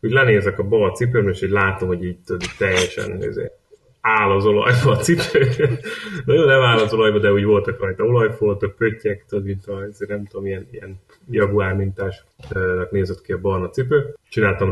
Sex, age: male, 30-49